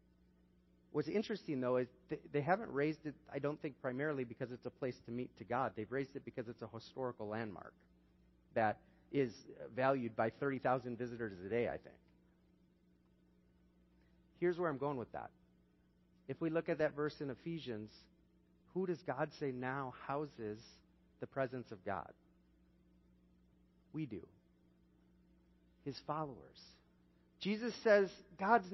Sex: male